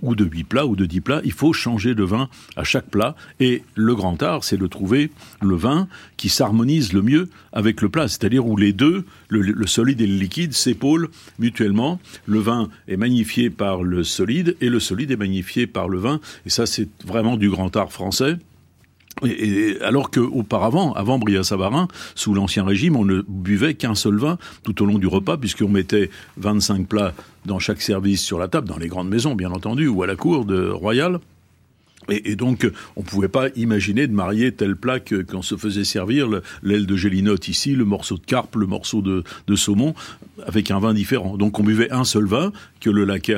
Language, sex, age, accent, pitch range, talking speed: French, male, 60-79, French, 95-120 Hz, 205 wpm